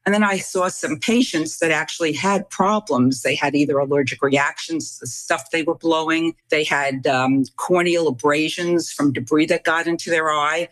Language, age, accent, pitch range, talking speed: English, 50-69, American, 145-185 Hz, 185 wpm